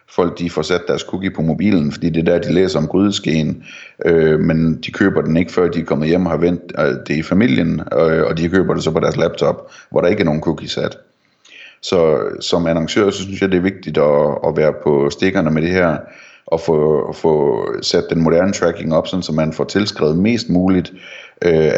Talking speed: 225 wpm